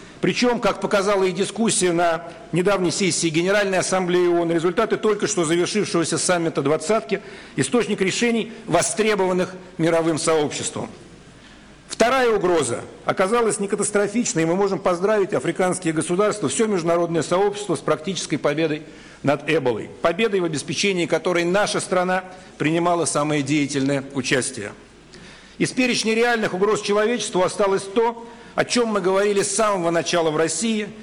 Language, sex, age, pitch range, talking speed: Russian, male, 60-79, 165-205 Hz, 130 wpm